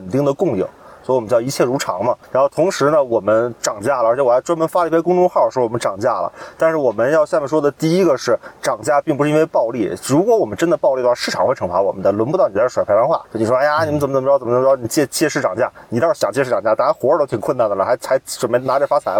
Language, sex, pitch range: Chinese, male, 125-170 Hz